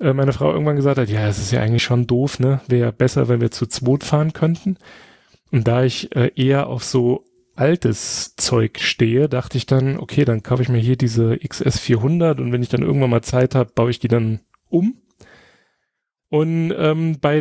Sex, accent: male, German